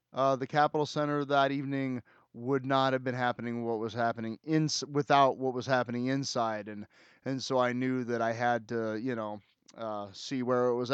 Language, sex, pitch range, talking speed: English, male, 115-135 Hz, 195 wpm